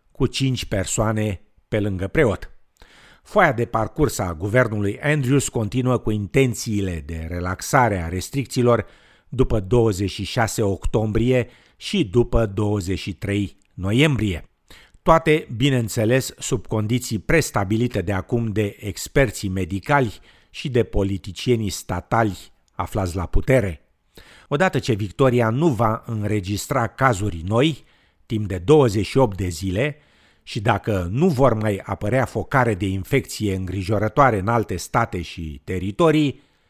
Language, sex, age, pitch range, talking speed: Romanian, male, 50-69, 100-125 Hz, 115 wpm